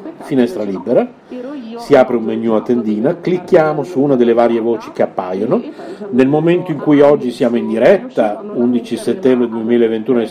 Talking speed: 165 wpm